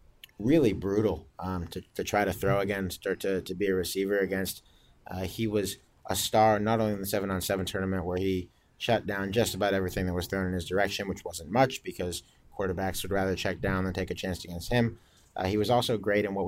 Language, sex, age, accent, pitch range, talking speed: English, male, 30-49, American, 95-105 Hz, 235 wpm